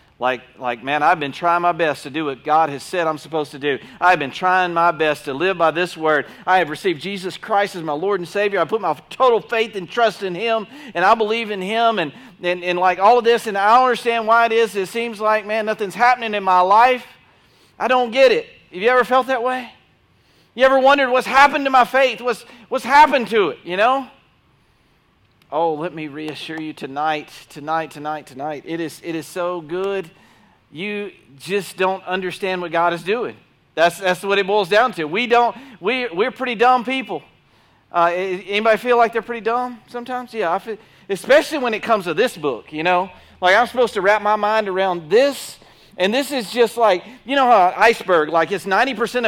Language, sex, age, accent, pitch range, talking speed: English, male, 40-59, American, 175-235 Hz, 220 wpm